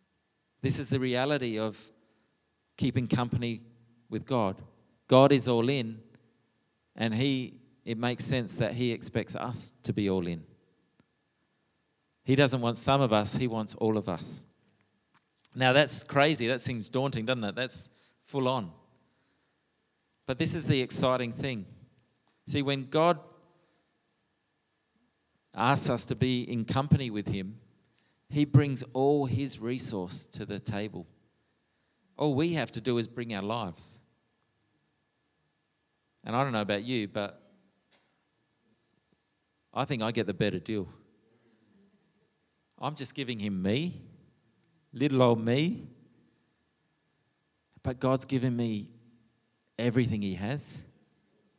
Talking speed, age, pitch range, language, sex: 130 wpm, 40-59, 110-135 Hz, English, male